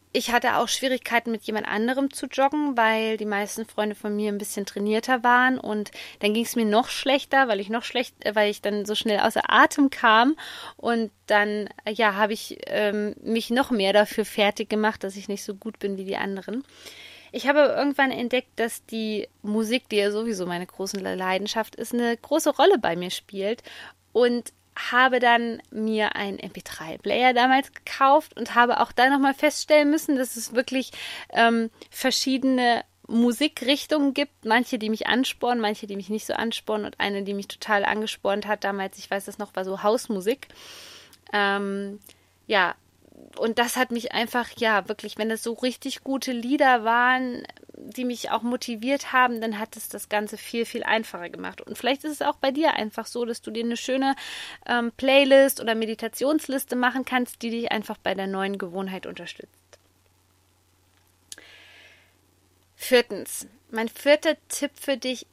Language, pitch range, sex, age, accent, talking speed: German, 205-255 Hz, female, 20-39, German, 175 wpm